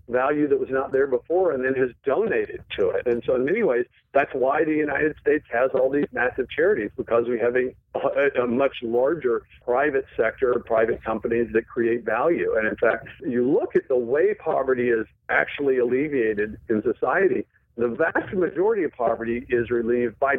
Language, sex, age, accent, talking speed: English, male, 50-69, American, 185 wpm